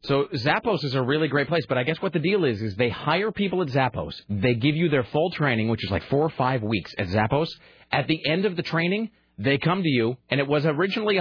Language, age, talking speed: English, 30-49, 260 wpm